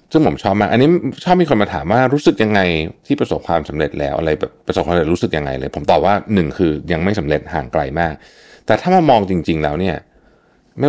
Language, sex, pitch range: Thai, male, 80-110 Hz